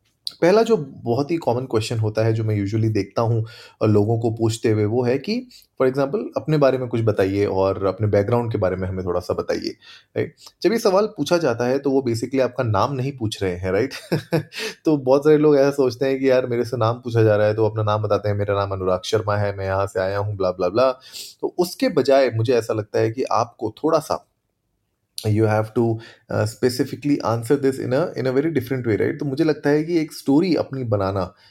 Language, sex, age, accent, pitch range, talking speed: Hindi, male, 30-49, native, 105-135 Hz, 235 wpm